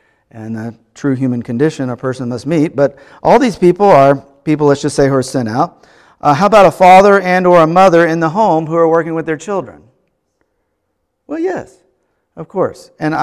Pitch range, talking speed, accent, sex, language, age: 135-180 Hz, 205 wpm, American, male, English, 50-69